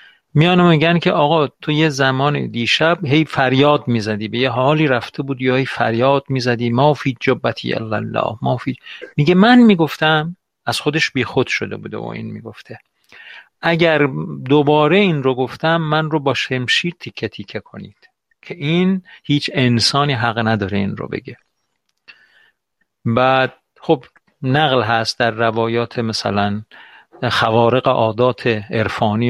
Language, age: Persian, 50-69